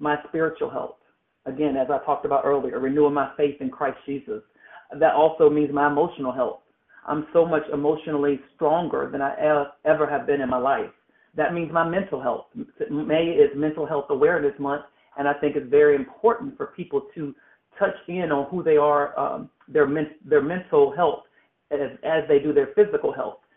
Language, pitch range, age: English, 145-190 Hz, 40-59